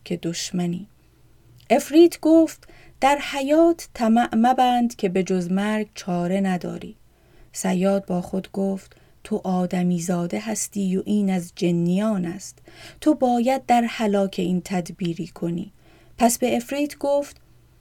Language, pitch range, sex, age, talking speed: Persian, 185-245 Hz, female, 30-49, 130 wpm